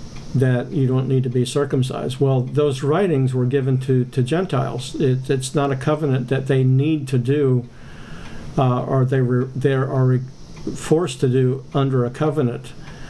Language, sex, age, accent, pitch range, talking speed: English, male, 50-69, American, 130-145 Hz, 175 wpm